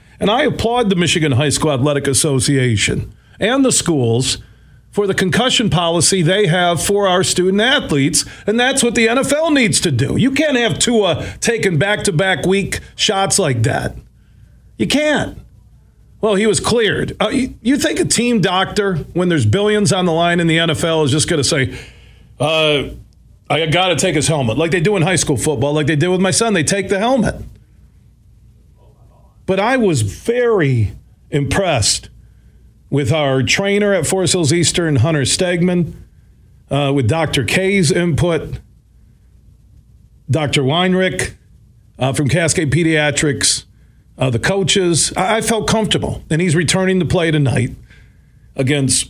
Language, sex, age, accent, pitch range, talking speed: English, male, 40-59, American, 135-195 Hz, 155 wpm